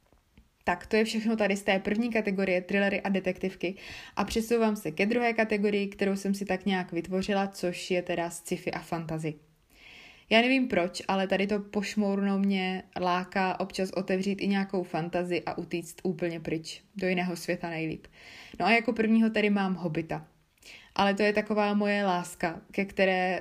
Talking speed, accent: 170 wpm, native